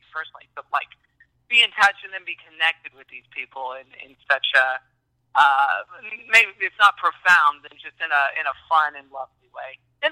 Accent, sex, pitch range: American, male, 150-220 Hz